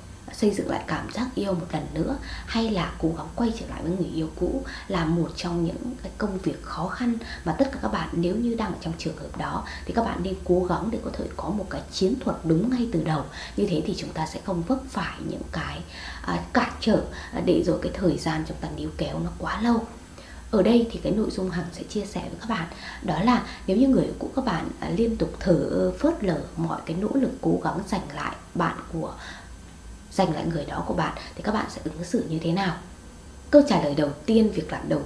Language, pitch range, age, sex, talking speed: Vietnamese, 160-225 Hz, 20-39, female, 250 wpm